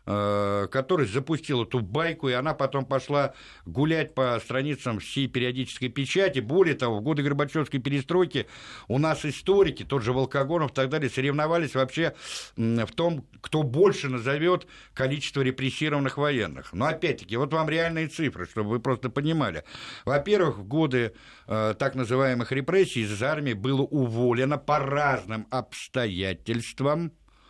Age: 60-79